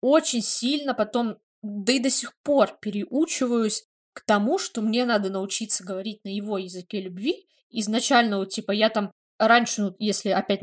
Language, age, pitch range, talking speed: Russian, 20-39, 205-245 Hz, 160 wpm